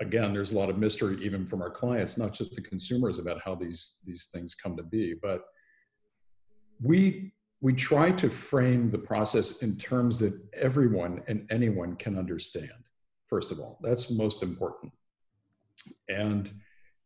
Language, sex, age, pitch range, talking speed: English, male, 50-69, 100-125 Hz, 160 wpm